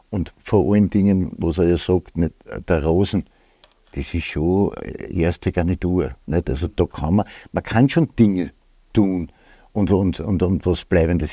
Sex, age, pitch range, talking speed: male, 60-79, 90-110 Hz, 170 wpm